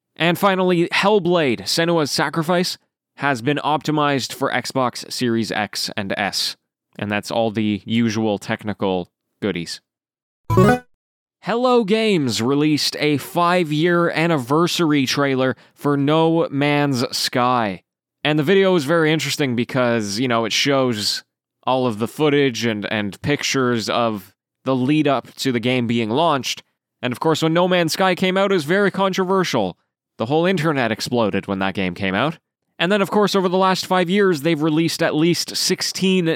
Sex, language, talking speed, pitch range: male, English, 155 wpm, 115-165 Hz